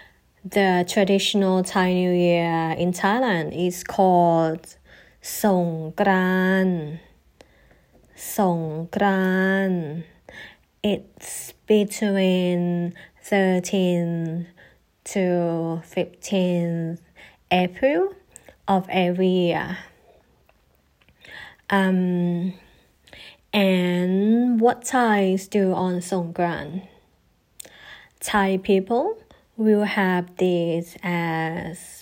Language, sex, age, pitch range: Thai, female, 20-39, 175-205 Hz